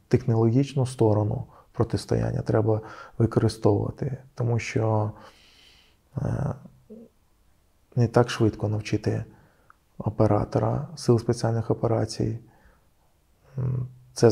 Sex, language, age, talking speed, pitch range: male, Russian, 20-39, 65 wpm, 105-125 Hz